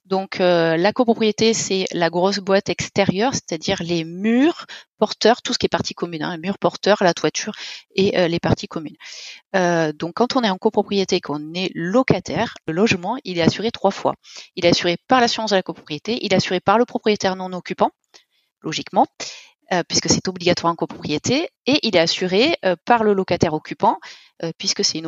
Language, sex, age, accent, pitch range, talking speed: French, female, 30-49, French, 180-240 Hz, 200 wpm